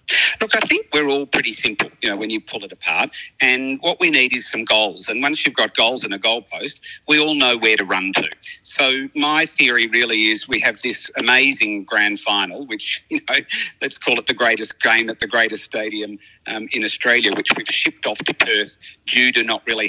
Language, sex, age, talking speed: English, male, 50-69, 220 wpm